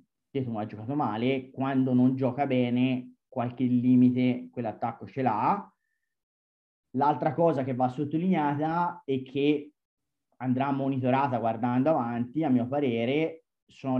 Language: Italian